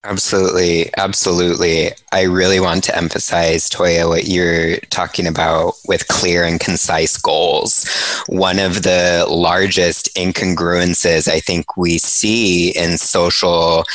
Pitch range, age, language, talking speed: 90-110 Hz, 20-39, English, 120 wpm